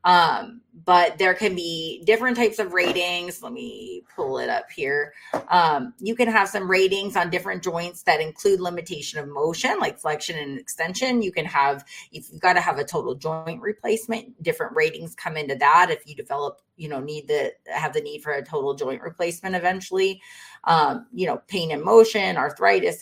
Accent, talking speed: American, 190 wpm